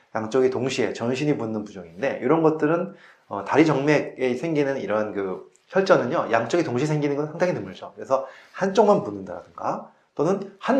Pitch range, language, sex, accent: 125-180 Hz, Korean, male, native